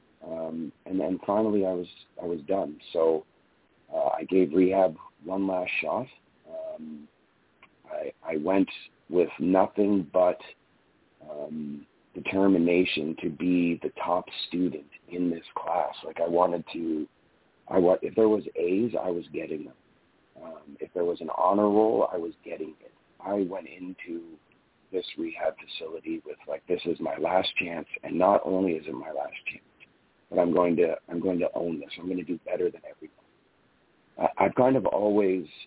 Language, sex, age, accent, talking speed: English, male, 40-59, American, 170 wpm